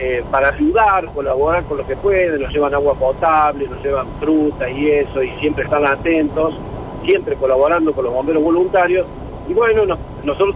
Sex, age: male, 50-69